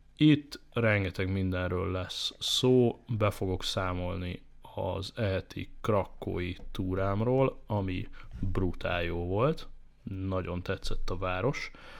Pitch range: 90-105 Hz